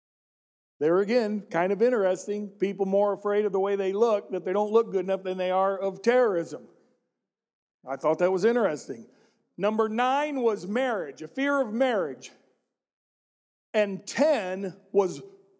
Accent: American